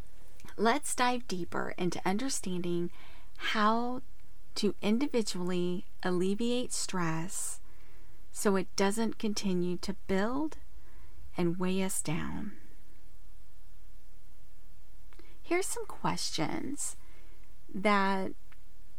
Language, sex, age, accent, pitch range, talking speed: English, female, 40-59, American, 175-230 Hz, 75 wpm